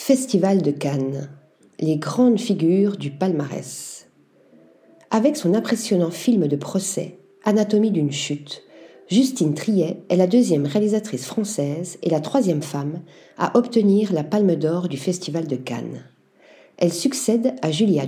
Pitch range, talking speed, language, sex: 160-220 Hz, 135 wpm, French, female